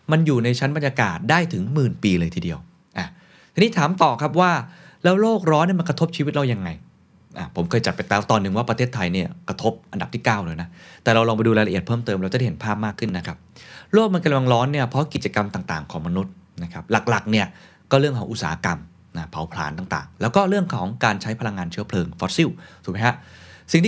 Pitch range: 95-145 Hz